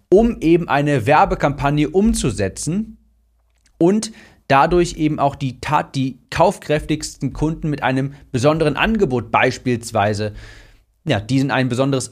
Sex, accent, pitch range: male, German, 115-155 Hz